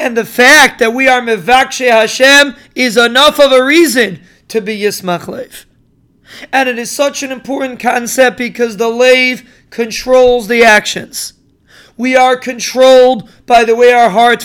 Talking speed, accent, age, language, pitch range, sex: 160 wpm, American, 40-59, English, 230-255 Hz, male